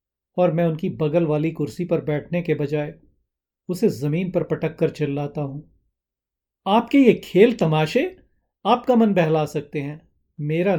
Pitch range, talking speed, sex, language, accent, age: 145-175 Hz, 150 wpm, male, Hindi, native, 40-59